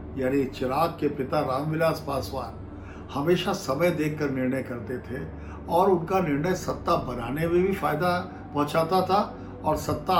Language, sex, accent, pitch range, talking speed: Hindi, male, native, 120-170 Hz, 145 wpm